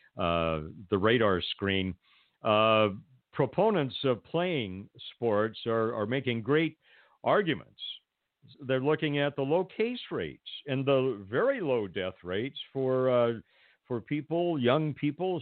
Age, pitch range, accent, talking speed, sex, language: 50-69, 110-145 Hz, American, 130 wpm, male, English